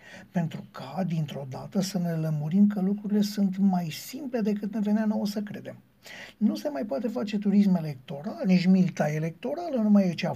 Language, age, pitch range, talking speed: Romanian, 60-79, 170-215 Hz, 190 wpm